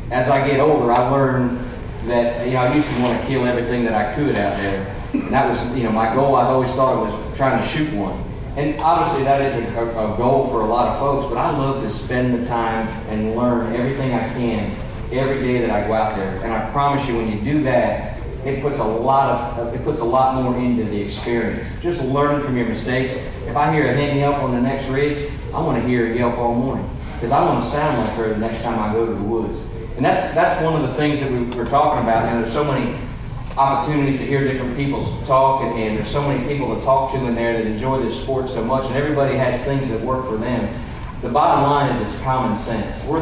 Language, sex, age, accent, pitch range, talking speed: English, male, 40-59, American, 115-135 Hz, 255 wpm